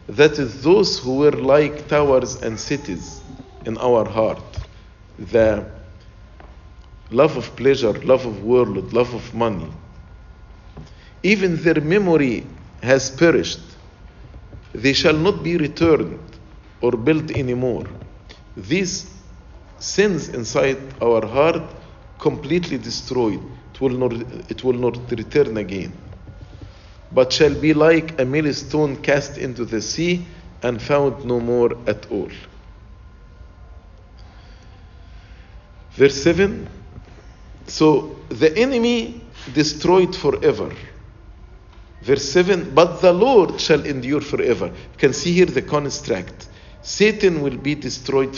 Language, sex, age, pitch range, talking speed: English, male, 50-69, 95-150 Hz, 110 wpm